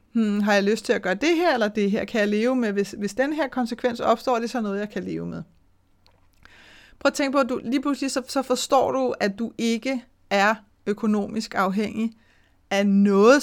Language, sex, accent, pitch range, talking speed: Danish, female, native, 205-245 Hz, 225 wpm